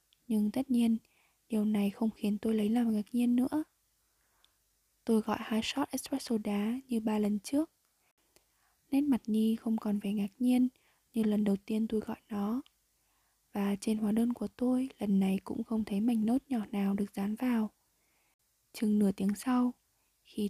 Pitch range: 205-245 Hz